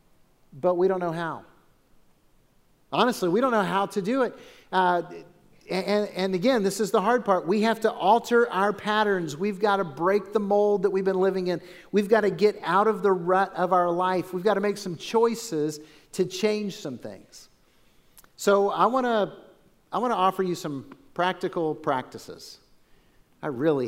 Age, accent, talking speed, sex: 50-69, American, 180 wpm, male